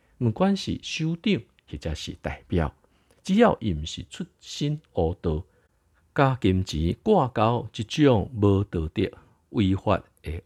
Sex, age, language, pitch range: male, 50-69, Chinese, 80-105 Hz